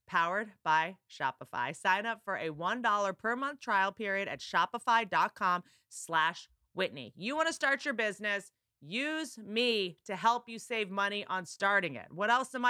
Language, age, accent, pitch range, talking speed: English, 30-49, American, 200-285 Hz, 165 wpm